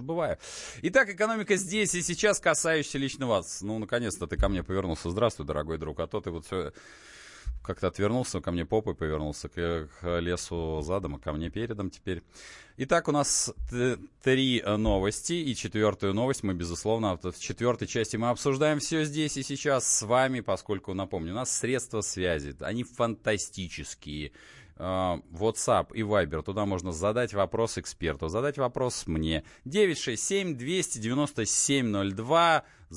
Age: 20-39